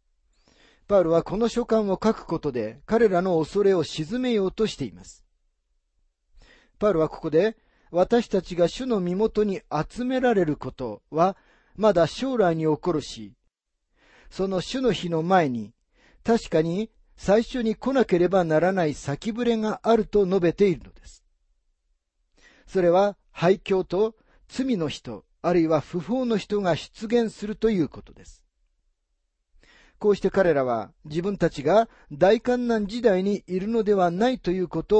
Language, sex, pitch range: Japanese, male, 130-215 Hz